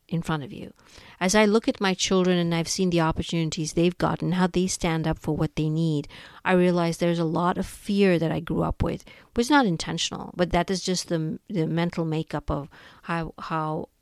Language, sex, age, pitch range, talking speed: English, female, 50-69, 165-195 Hz, 225 wpm